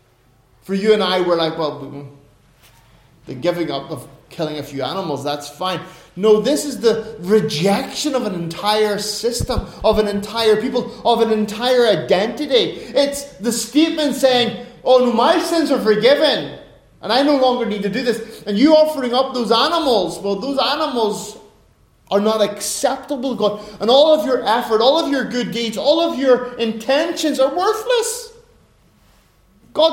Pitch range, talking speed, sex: 180-245 Hz, 160 wpm, male